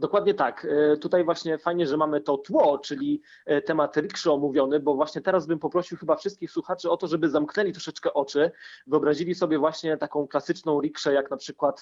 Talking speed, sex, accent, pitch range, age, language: 185 wpm, male, native, 140-170 Hz, 30-49, Polish